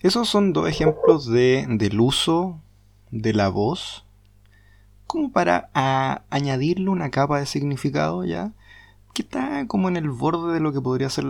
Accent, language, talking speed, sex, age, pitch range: Mexican, Spanish, 155 wpm, male, 20-39, 100-140 Hz